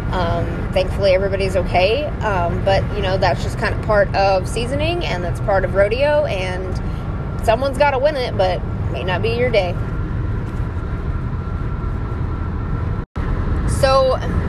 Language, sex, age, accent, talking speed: English, female, 20-39, American, 135 wpm